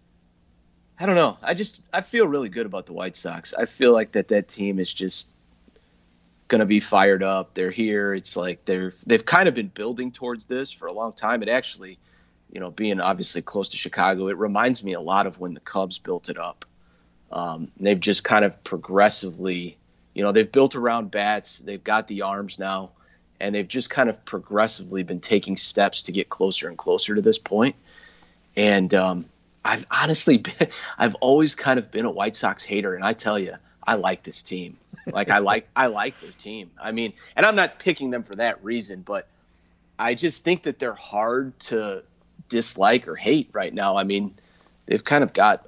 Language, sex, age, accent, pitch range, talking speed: English, male, 30-49, American, 95-125 Hz, 205 wpm